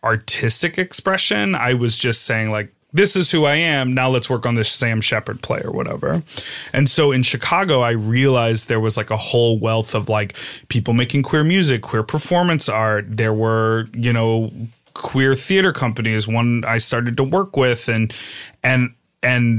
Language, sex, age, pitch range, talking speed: English, male, 30-49, 110-130 Hz, 180 wpm